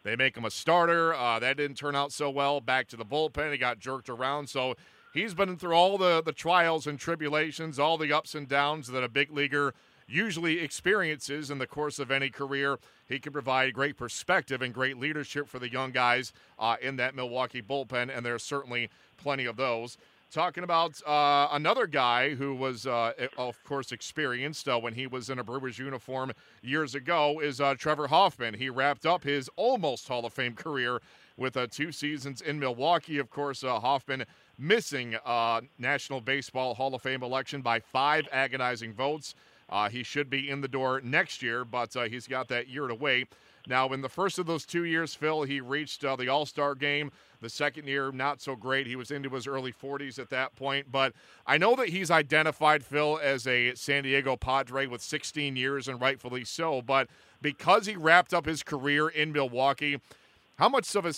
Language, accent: English, American